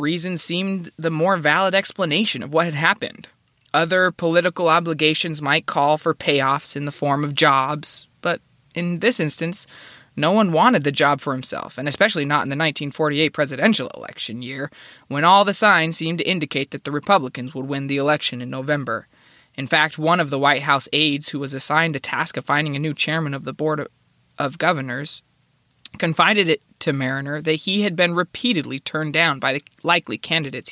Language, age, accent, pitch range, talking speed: English, 20-39, American, 140-170 Hz, 190 wpm